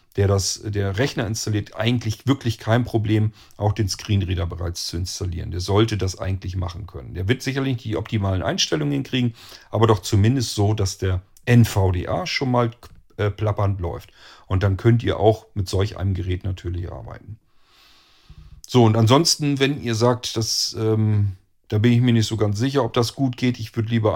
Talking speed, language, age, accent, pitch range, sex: 185 wpm, German, 40-59, German, 95-115 Hz, male